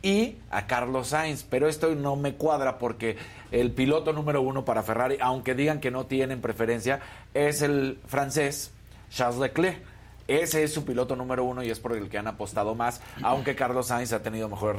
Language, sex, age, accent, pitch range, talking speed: Spanish, male, 40-59, Mexican, 105-130 Hz, 190 wpm